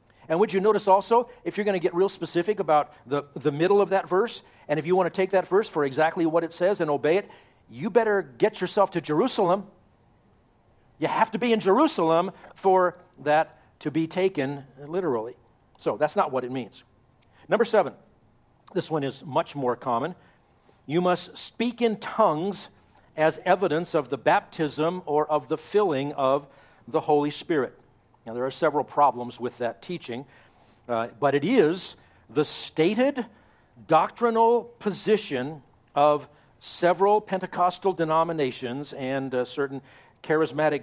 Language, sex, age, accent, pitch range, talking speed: English, male, 50-69, American, 130-185 Hz, 160 wpm